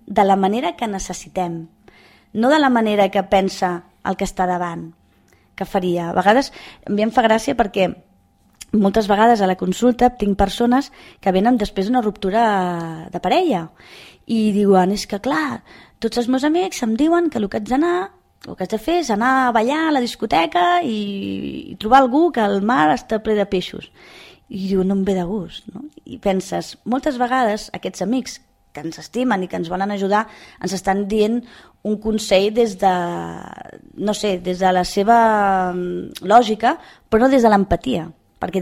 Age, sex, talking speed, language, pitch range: 20-39, female, 180 wpm, Spanish, 190-240 Hz